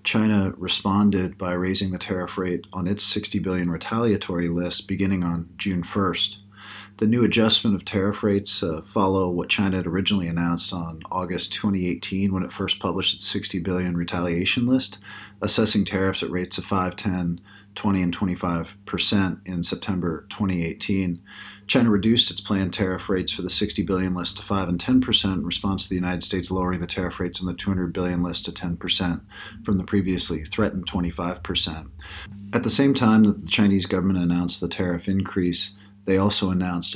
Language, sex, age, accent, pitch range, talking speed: English, male, 40-59, American, 90-100 Hz, 180 wpm